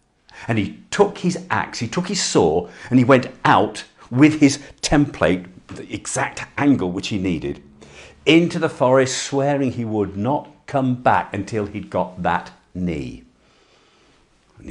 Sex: male